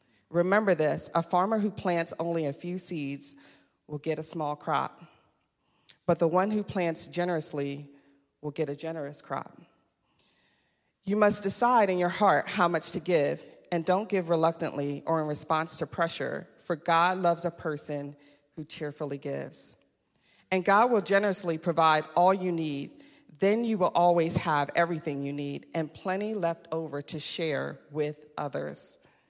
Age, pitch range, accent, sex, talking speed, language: 40-59, 155-185 Hz, American, female, 160 wpm, English